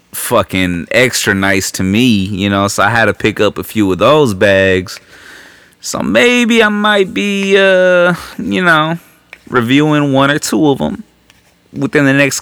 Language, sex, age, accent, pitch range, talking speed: English, male, 30-49, American, 115-170 Hz, 170 wpm